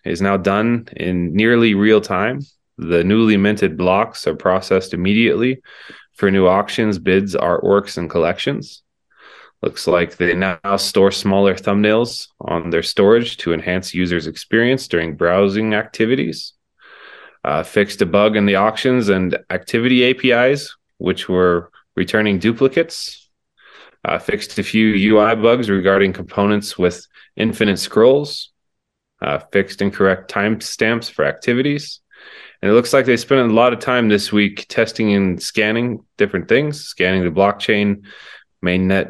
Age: 20-39